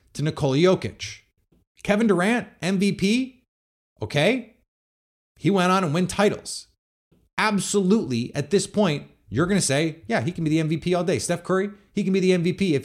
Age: 30-49